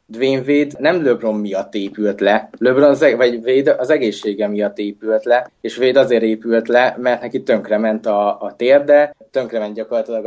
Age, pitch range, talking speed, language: 20-39, 110-135 Hz, 165 wpm, Hungarian